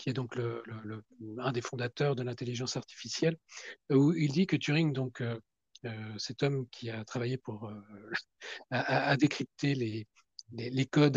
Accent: French